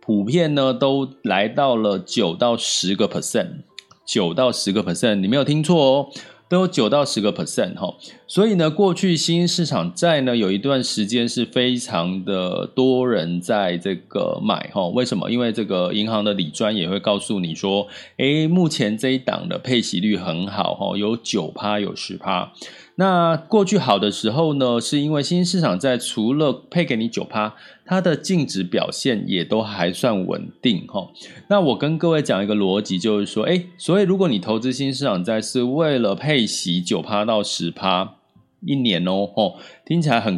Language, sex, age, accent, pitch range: Chinese, male, 30-49, native, 105-160 Hz